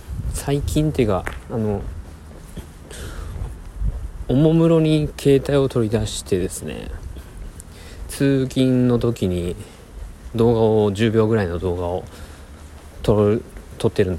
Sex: male